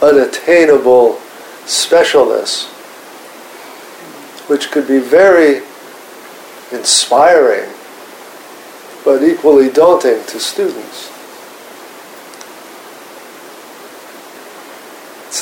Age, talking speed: 50-69, 50 wpm